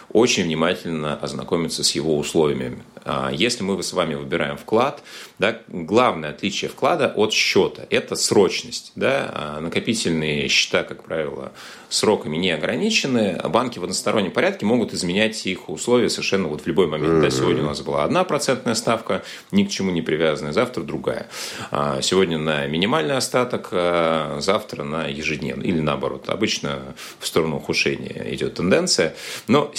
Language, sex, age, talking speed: Russian, male, 30-49, 135 wpm